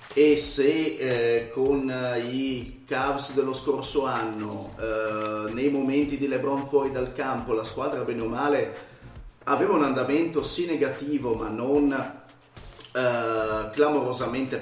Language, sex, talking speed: Italian, male, 125 wpm